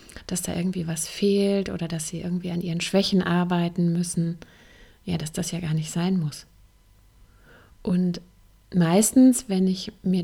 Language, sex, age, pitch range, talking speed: German, female, 30-49, 165-190 Hz, 160 wpm